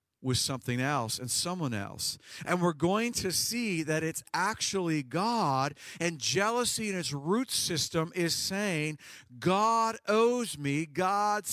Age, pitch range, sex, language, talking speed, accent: 50-69, 135-185 Hz, male, English, 140 wpm, American